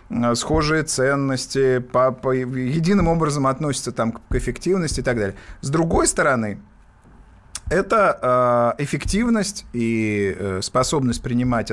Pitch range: 115-150 Hz